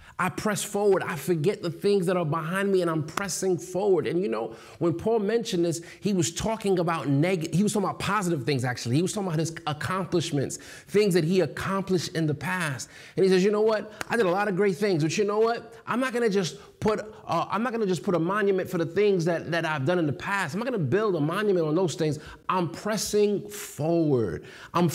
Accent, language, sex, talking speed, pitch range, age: American, English, male, 245 wpm, 135-180 Hz, 30-49